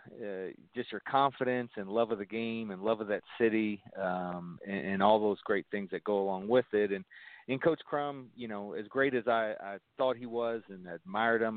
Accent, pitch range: American, 95-115 Hz